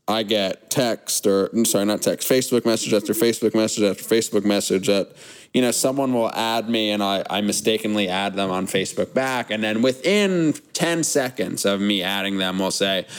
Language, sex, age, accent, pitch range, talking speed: English, male, 20-39, American, 100-135 Hz, 190 wpm